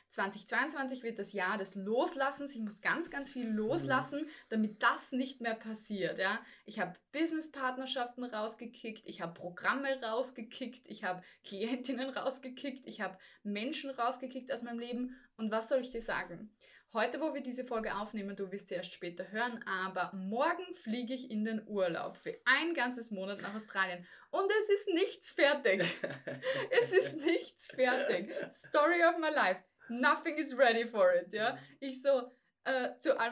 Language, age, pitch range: German, 20-39, 210-270 Hz